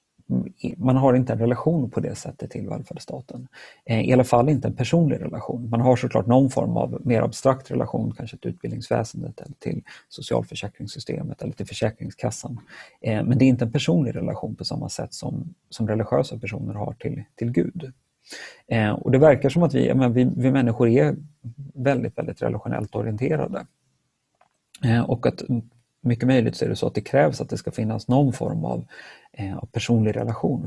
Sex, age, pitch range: male, 30-49, 110-135 Hz